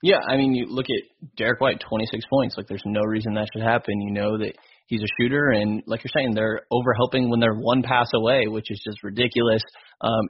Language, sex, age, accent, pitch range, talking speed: English, male, 20-39, American, 110-120 Hz, 225 wpm